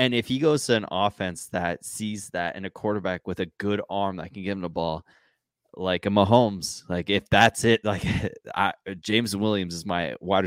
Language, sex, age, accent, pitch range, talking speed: English, male, 20-39, American, 95-115 Hz, 210 wpm